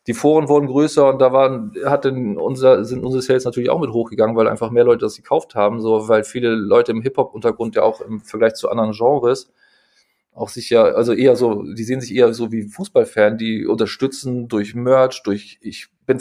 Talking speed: 210 wpm